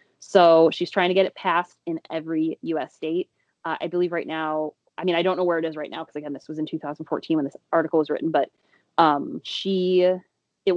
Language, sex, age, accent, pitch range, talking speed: English, female, 20-39, American, 160-175 Hz, 230 wpm